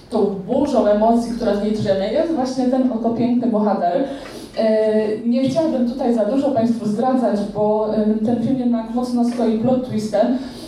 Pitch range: 230-255 Hz